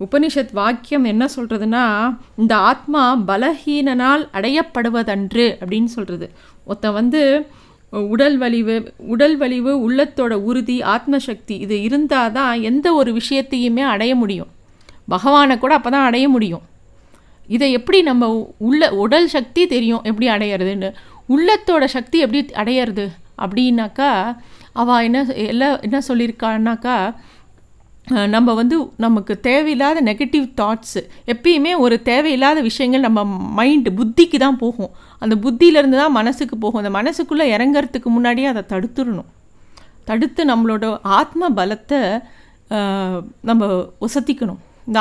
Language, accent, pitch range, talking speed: Tamil, native, 220-275 Hz, 105 wpm